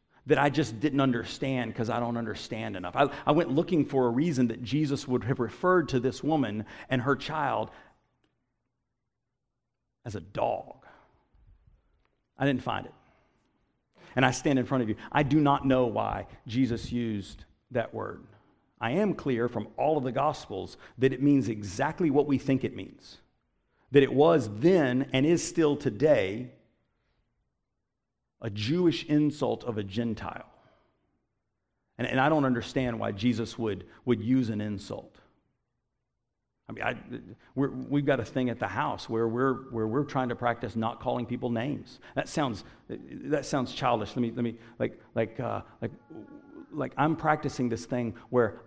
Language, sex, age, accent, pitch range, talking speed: English, male, 50-69, American, 115-140 Hz, 165 wpm